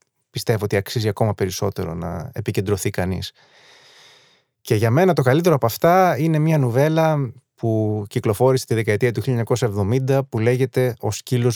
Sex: male